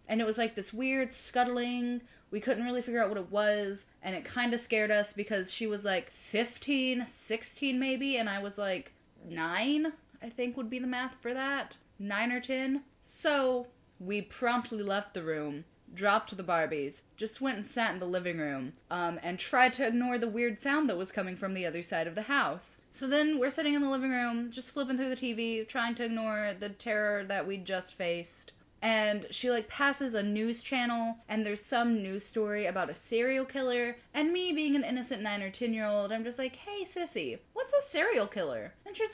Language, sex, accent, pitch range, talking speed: English, female, American, 200-255 Hz, 210 wpm